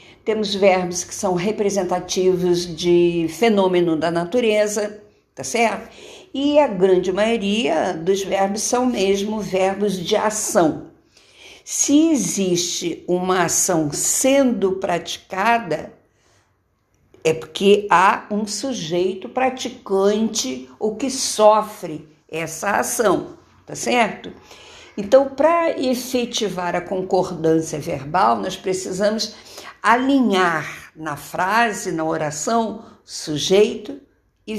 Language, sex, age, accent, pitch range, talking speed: Portuguese, female, 50-69, Brazilian, 175-225 Hz, 95 wpm